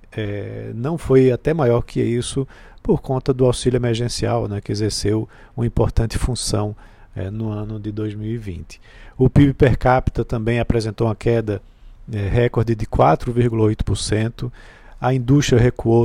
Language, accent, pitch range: Portuguese, Brazilian, 110-135 Hz